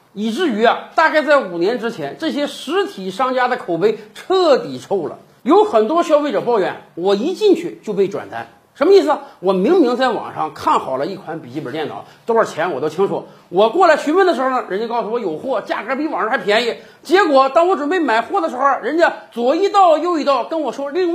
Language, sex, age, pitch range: Chinese, male, 50-69, 220-335 Hz